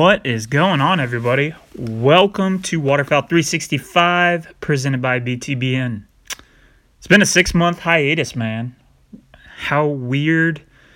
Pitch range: 125-150 Hz